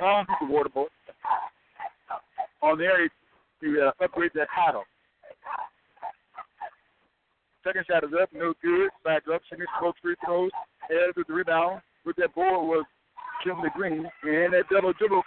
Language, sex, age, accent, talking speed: English, male, 60-79, American, 135 wpm